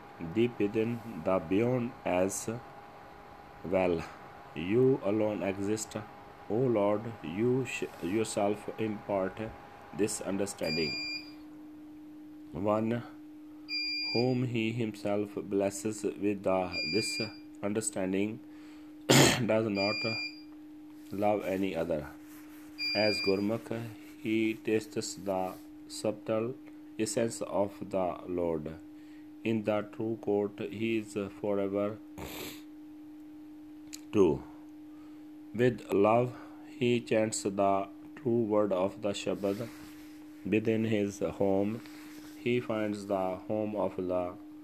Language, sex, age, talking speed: Punjabi, male, 40-59, 90 wpm